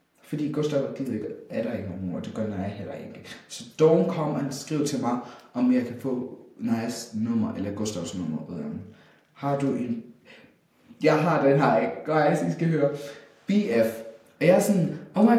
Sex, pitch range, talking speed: male, 115-165 Hz, 185 wpm